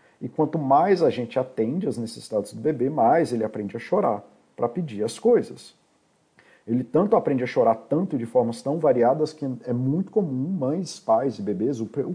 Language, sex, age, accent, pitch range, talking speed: Portuguese, male, 50-69, Brazilian, 120-155 Hz, 200 wpm